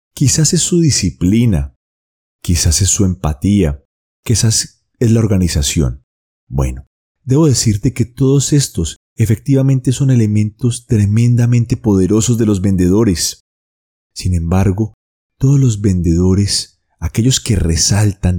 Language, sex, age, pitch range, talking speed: Spanish, male, 30-49, 80-115 Hz, 110 wpm